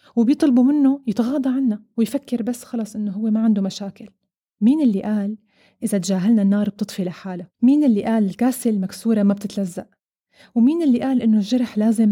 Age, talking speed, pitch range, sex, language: 20-39, 165 wpm, 200-245 Hz, female, Arabic